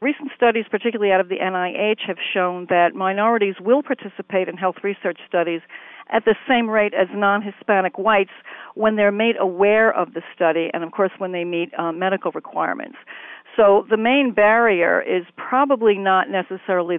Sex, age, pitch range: female, 50-69, 175-215 Hz